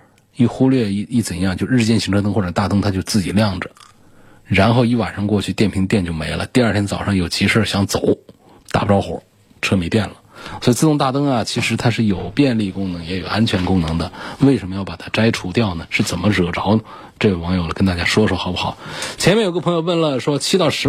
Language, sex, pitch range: Chinese, male, 95-125 Hz